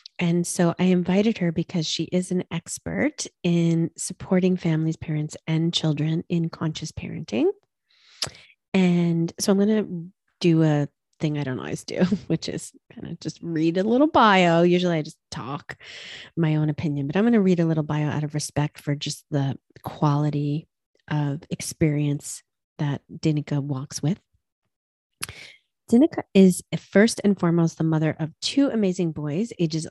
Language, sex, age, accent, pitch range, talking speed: English, female, 30-49, American, 155-195 Hz, 160 wpm